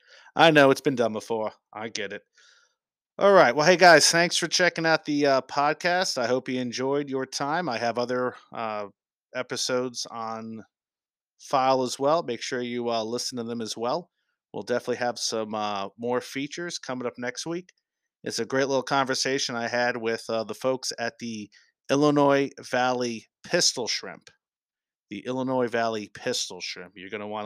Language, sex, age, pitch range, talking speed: English, male, 30-49, 115-140 Hz, 180 wpm